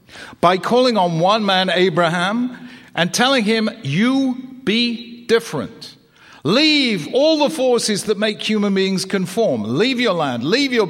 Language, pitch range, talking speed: English, 120-185 Hz, 145 wpm